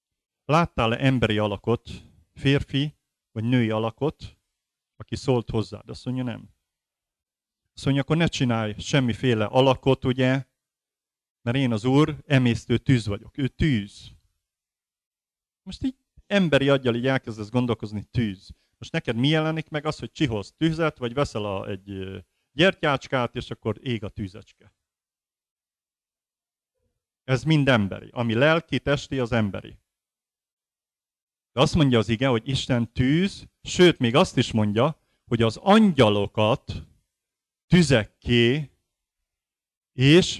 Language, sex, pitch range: Hungarian, male, 110-145 Hz